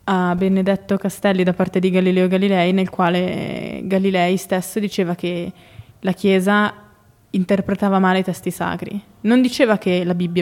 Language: Italian